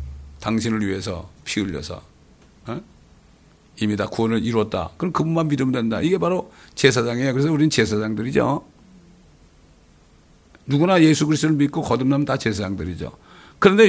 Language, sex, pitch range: Korean, male, 85-120 Hz